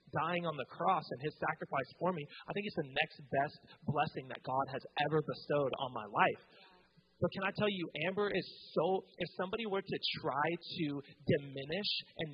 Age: 30-49